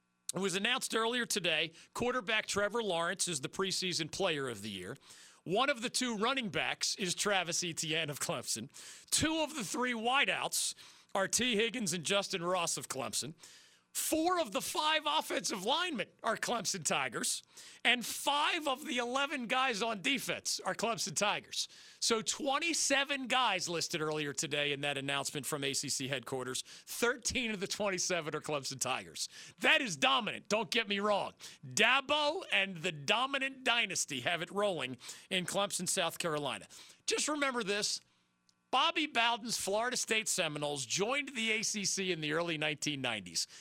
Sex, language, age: male, English, 40-59